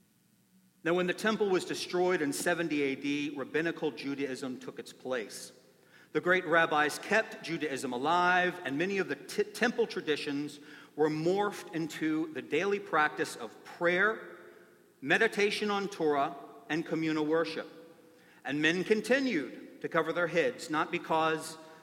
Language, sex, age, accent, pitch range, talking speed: English, male, 50-69, American, 145-190 Hz, 135 wpm